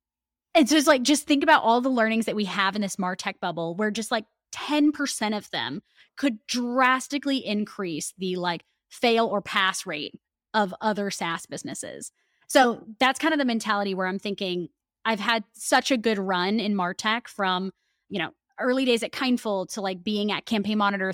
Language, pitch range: English, 185-230 Hz